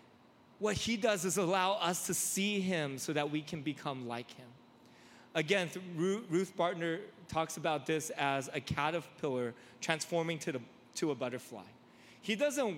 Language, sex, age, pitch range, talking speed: English, male, 30-49, 130-185 Hz, 150 wpm